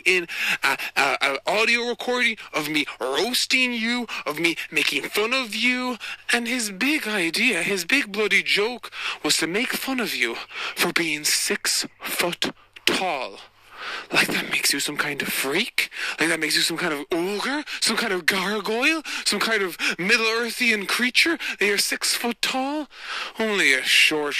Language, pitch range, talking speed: English, 165-235 Hz, 160 wpm